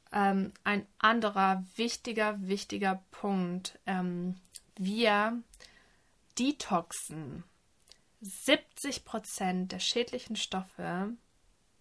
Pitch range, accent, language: 185-215 Hz, German, German